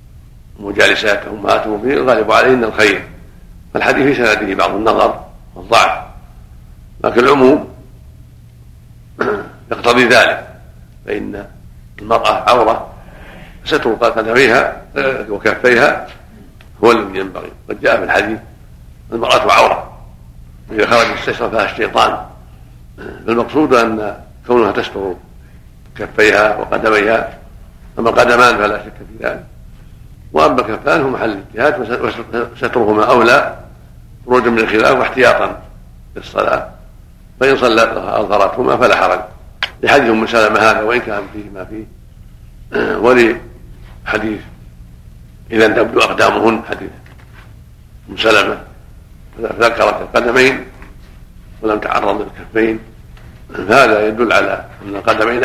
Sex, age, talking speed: male, 60-79, 95 wpm